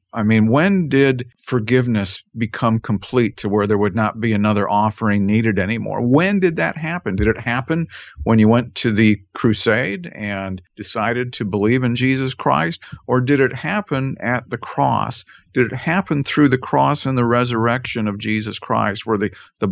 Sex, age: male, 50-69